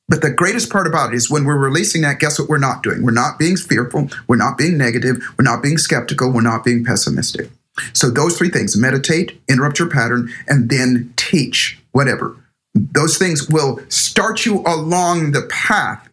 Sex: male